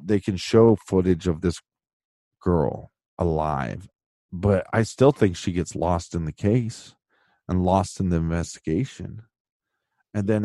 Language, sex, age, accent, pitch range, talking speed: English, male, 40-59, American, 85-105 Hz, 145 wpm